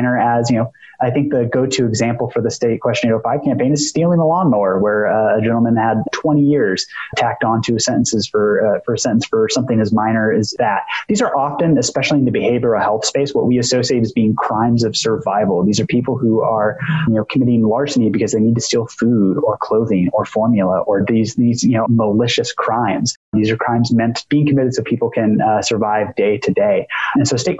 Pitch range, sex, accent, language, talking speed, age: 110-130 Hz, male, American, English, 215 wpm, 20-39